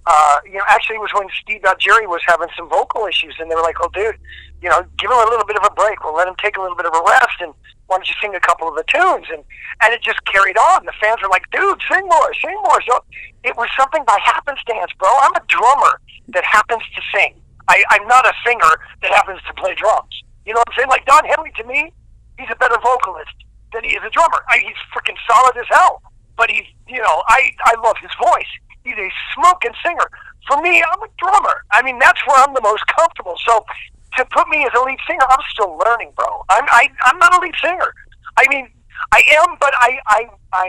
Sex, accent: male, American